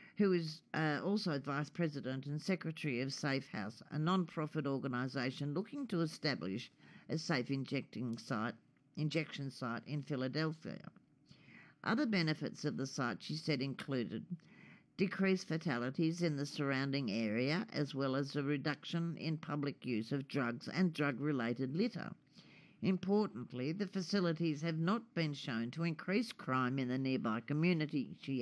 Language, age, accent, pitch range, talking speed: English, 50-69, Australian, 135-185 Hz, 140 wpm